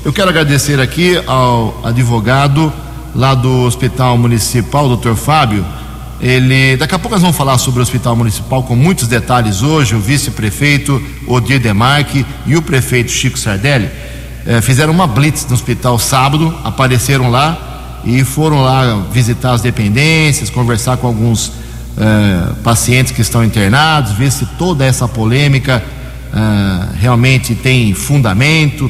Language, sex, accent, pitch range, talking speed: Portuguese, male, Brazilian, 115-145 Hz, 140 wpm